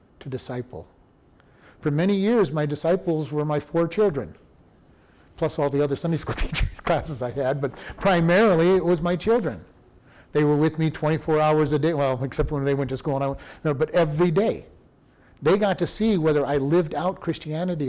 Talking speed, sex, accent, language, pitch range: 200 wpm, male, American, English, 140-180 Hz